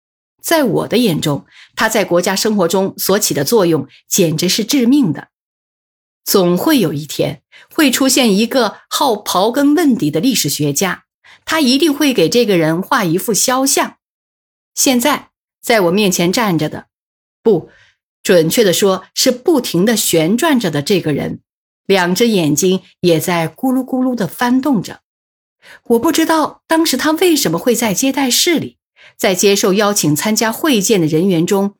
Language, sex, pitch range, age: Chinese, female, 180-260 Hz, 50-69